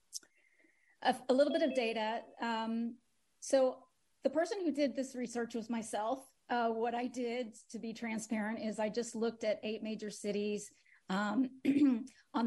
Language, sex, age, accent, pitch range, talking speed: English, female, 30-49, American, 195-240 Hz, 155 wpm